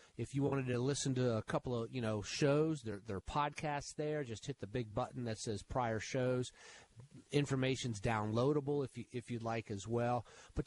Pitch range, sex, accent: 105-130 Hz, male, American